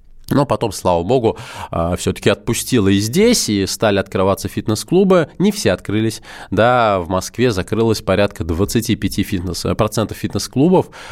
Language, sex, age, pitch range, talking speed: Russian, male, 20-39, 90-120 Hz, 120 wpm